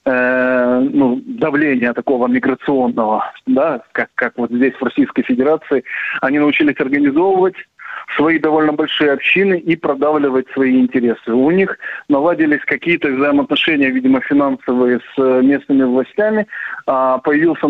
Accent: native